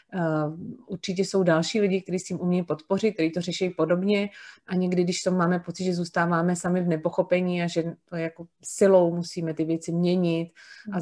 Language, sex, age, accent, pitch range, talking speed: Czech, female, 30-49, native, 165-190 Hz, 185 wpm